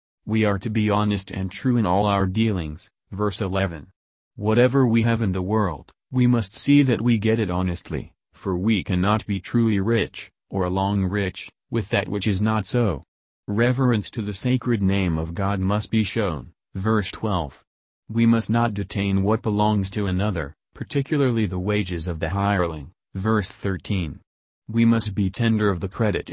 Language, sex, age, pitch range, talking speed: English, male, 40-59, 90-110 Hz, 175 wpm